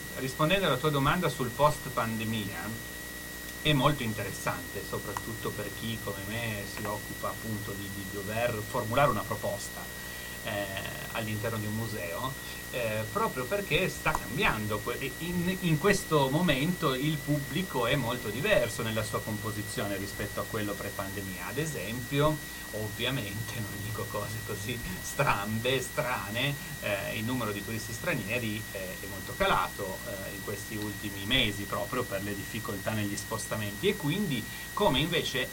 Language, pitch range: Italian, 100-130 Hz